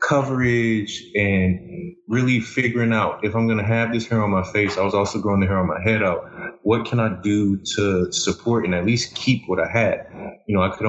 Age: 20-39